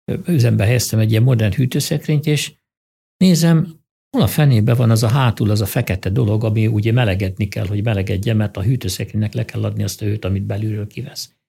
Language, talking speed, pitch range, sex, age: Hungarian, 195 wpm, 110-135 Hz, male, 60-79